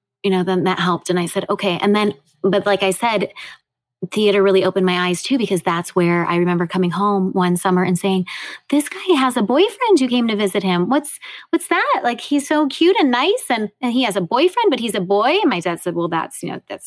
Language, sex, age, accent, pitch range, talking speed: English, female, 20-39, American, 190-265 Hz, 250 wpm